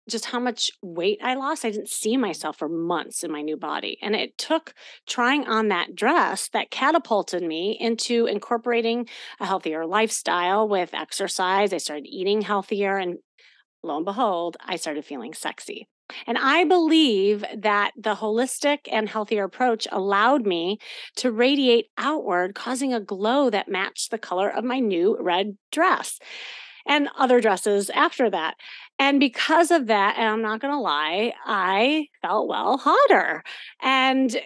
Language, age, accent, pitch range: English, 30-49, American, 195-255 Hz